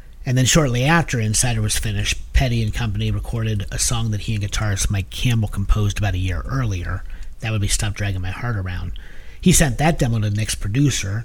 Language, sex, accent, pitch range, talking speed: English, male, American, 100-120 Hz, 210 wpm